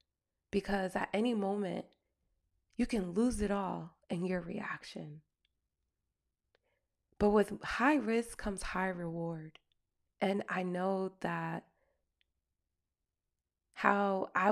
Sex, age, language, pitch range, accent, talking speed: female, 20-39, English, 180-230 Hz, American, 105 wpm